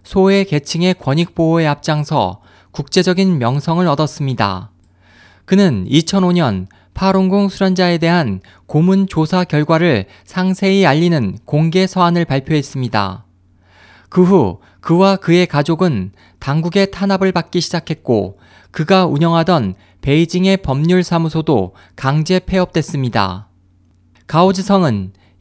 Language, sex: Korean, male